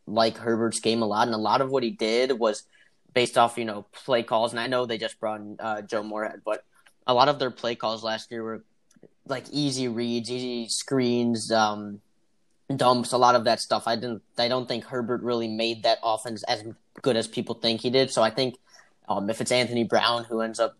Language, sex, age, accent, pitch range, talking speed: English, male, 10-29, American, 110-120 Hz, 230 wpm